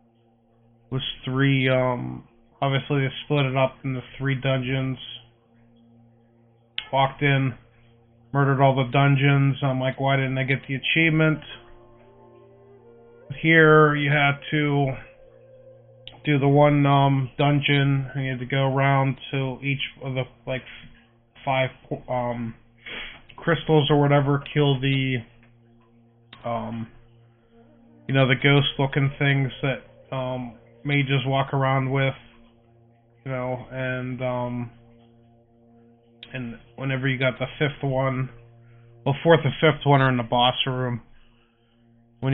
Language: English